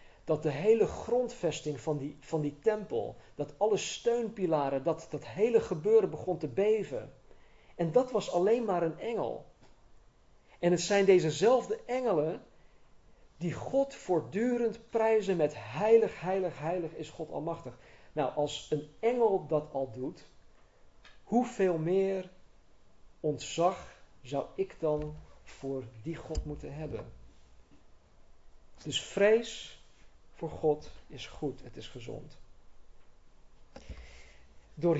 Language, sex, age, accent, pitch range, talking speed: Dutch, male, 50-69, Dutch, 135-205 Hz, 120 wpm